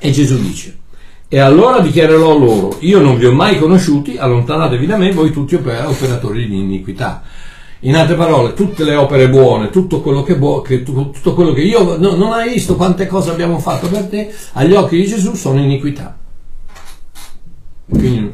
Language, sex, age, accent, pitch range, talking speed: Italian, male, 60-79, native, 125-170 Hz, 175 wpm